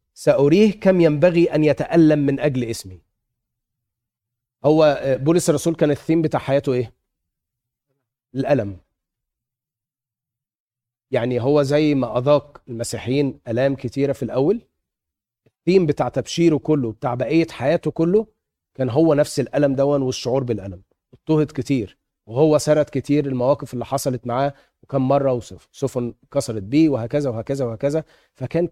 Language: Arabic